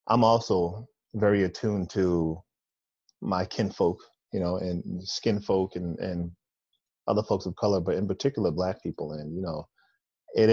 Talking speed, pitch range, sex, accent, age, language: 155 wpm, 85-105 Hz, male, American, 30-49, English